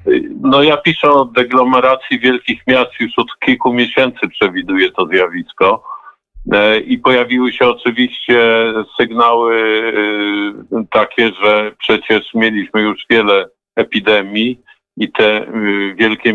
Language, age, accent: Polish, 50-69, native